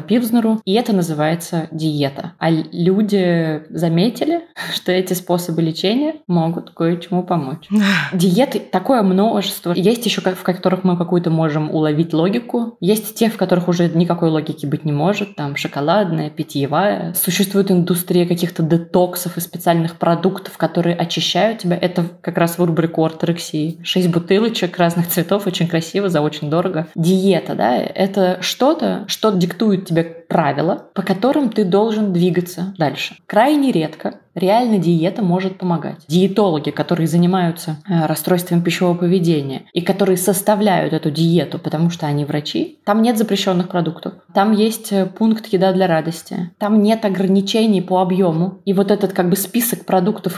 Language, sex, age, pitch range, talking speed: Russian, female, 20-39, 170-200 Hz, 145 wpm